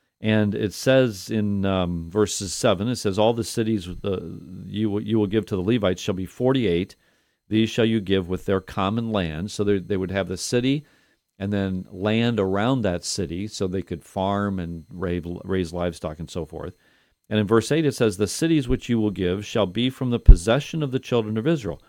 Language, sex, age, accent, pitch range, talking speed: English, male, 50-69, American, 95-125 Hz, 200 wpm